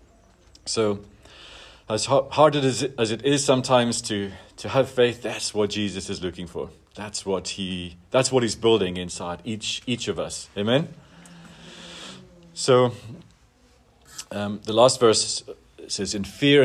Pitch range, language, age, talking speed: 90-120 Hz, English, 40-59, 140 wpm